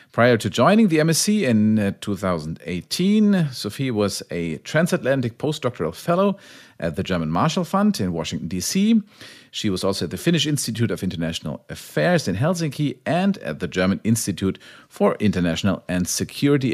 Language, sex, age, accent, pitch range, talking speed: English, male, 40-59, German, 95-150 Hz, 150 wpm